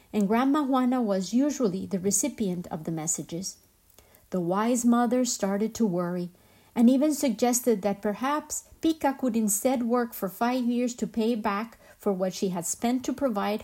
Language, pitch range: Spanish, 200-255 Hz